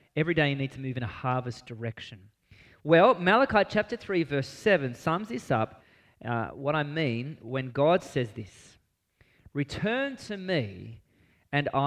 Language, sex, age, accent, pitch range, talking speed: English, male, 30-49, Australian, 125-195 Hz, 155 wpm